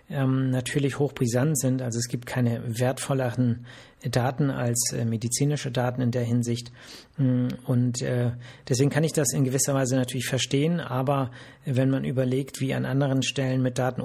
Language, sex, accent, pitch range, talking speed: German, male, German, 125-150 Hz, 150 wpm